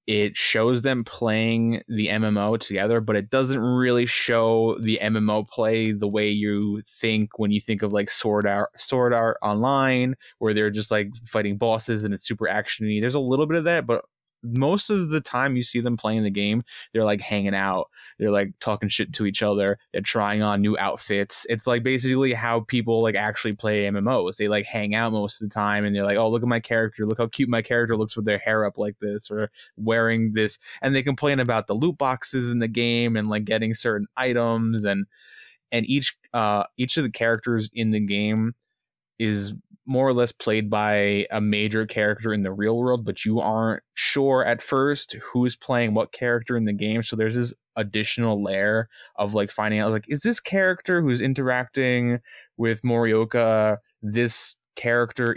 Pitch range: 105-125 Hz